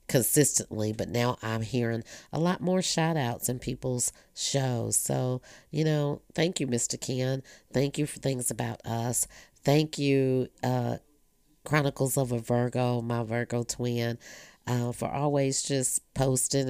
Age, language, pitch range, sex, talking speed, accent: 40-59, English, 120-140 Hz, female, 145 wpm, American